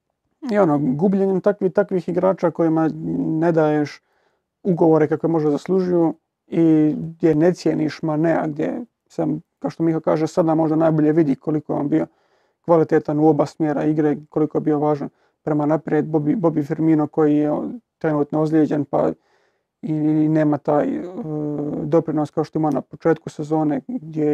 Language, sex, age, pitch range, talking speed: Croatian, male, 30-49, 155-170 Hz, 155 wpm